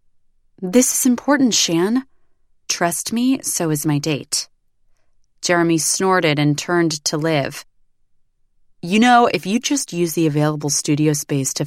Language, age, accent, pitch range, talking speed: English, 20-39, American, 150-205 Hz, 140 wpm